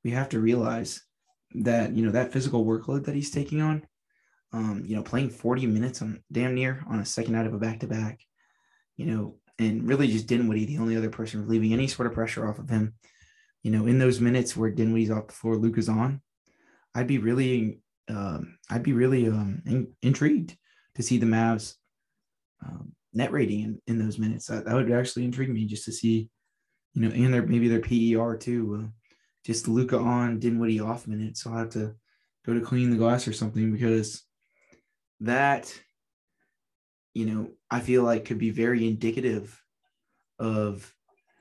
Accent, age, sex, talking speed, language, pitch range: American, 20-39, male, 195 wpm, English, 110-120 Hz